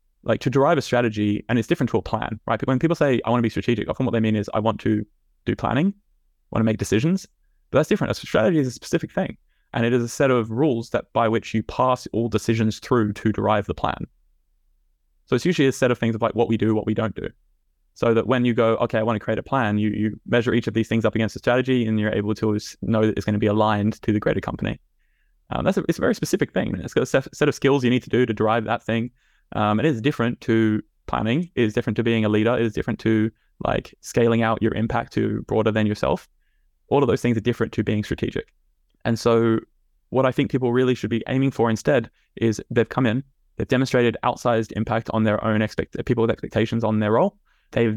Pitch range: 110-120 Hz